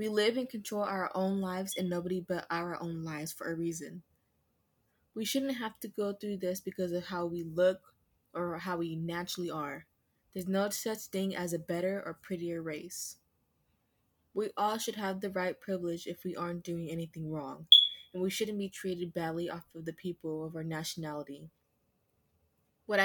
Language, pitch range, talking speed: English, 165-185 Hz, 180 wpm